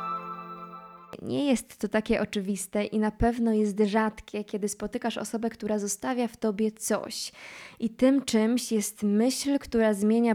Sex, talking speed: female, 145 wpm